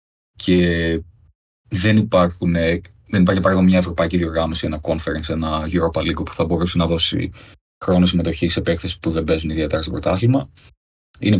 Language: Greek